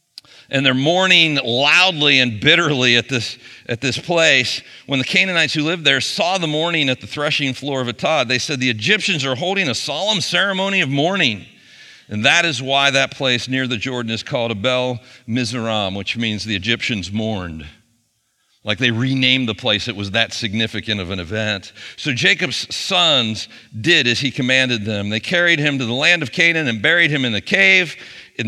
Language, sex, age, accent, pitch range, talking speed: English, male, 50-69, American, 105-135 Hz, 190 wpm